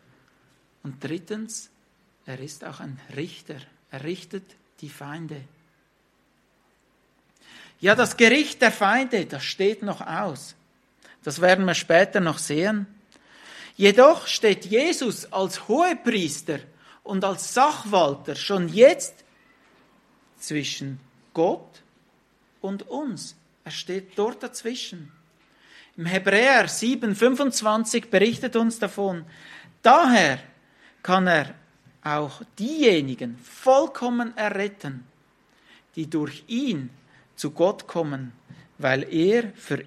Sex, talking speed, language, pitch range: male, 100 wpm, English, 150-230 Hz